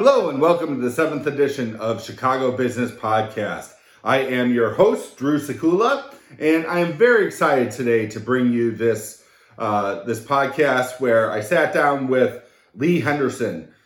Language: English